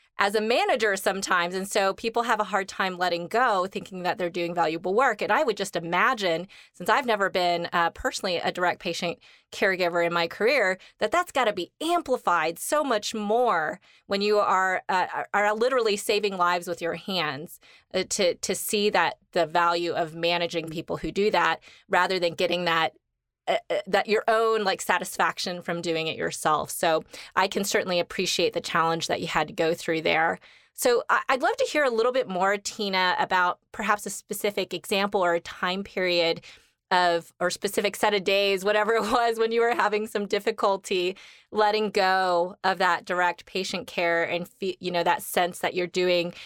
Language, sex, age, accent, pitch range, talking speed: English, female, 20-39, American, 175-210 Hz, 190 wpm